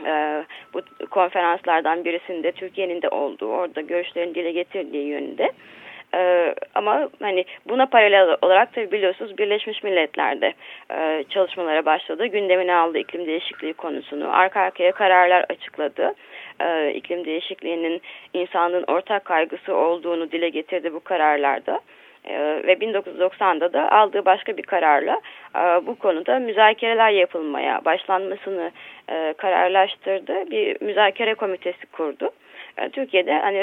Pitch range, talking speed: 175-225 Hz, 115 wpm